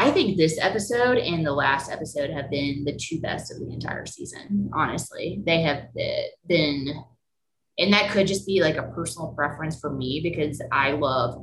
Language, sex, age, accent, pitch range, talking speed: English, female, 20-39, American, 145-205 Hz, 190 wpm